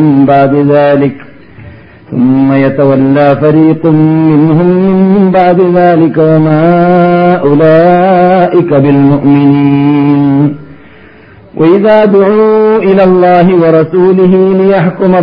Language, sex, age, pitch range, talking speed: Malayalam, male, 50-69, 145-185 Hz, 65 wpm